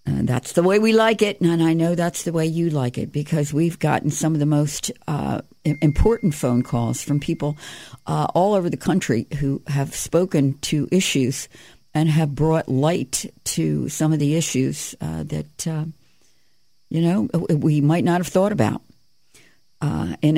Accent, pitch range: American, 130-165 Hz